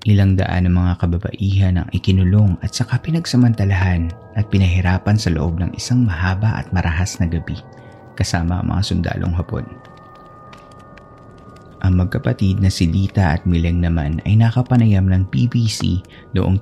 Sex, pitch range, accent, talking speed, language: male, 90-110 Hz, native, 140 wpm, Filipino